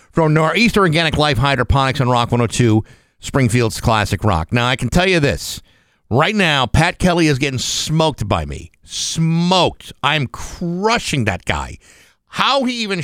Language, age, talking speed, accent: English, 50-69, 155 wpm, American